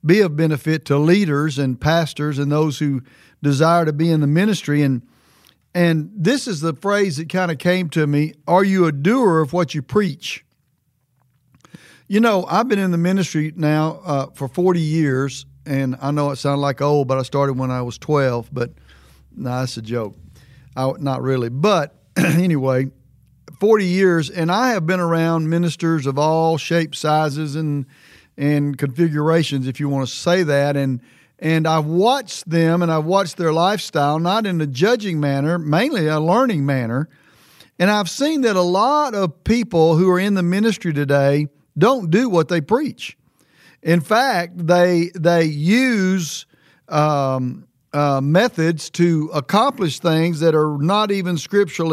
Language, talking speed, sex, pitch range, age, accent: English, 170 wpm, male, 140-180 Hz, 50-69, American